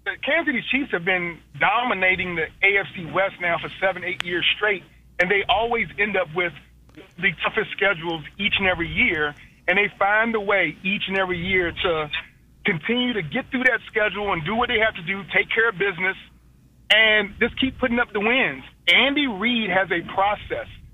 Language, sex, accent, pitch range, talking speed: English, male, American, 185-230 Hz, 195 wpm